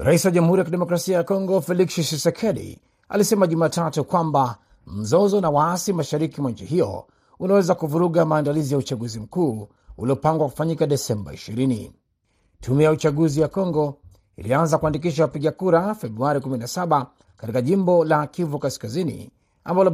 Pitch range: 130-175 Hz